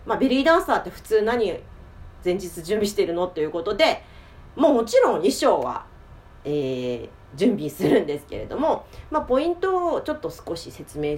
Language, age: Japanese, 40-59